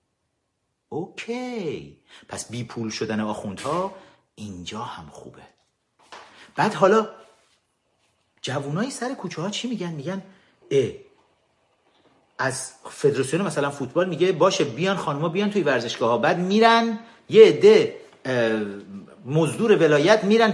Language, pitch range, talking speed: Persian, 165-250 Hz, 115 wpm